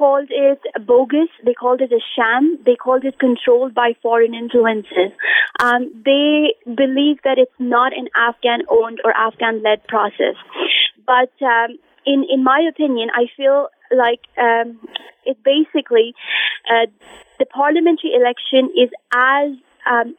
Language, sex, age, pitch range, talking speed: English, female, 20-39, 235-275 Hz, 135 wpm